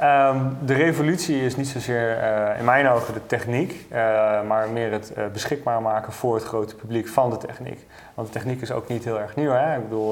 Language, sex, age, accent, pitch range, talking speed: Dutch, male, 30-49, Dutch, 110-130 Hz, 215 wpm